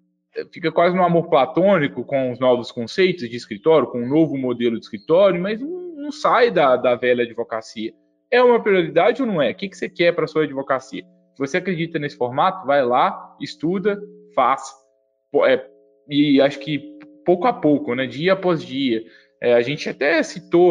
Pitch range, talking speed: 120-185 Hz, 180 wpm